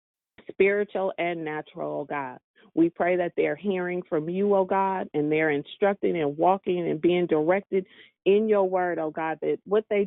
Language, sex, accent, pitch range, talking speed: English, female, American, 160-200 Hz, 180 wpm